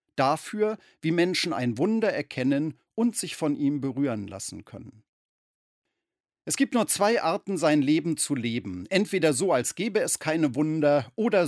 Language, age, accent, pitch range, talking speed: German, 40-59, German, 125-170 Hz, 155 wpm